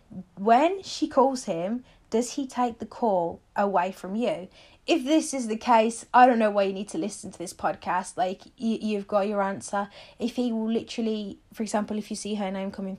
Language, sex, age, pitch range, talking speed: English, female, 20-39, 195-245 Hz, 215 wpm